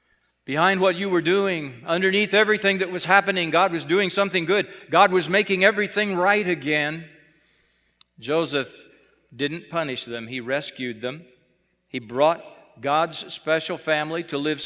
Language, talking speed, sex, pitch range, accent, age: English, 145 wpm, male, 120-170 Hz, American, 50-69